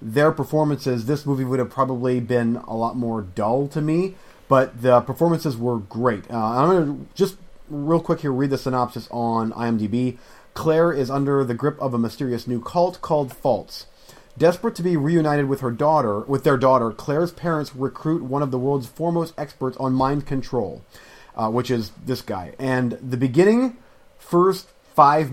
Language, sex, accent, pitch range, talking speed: English, male, American, 125-160 Hz, 180 wpm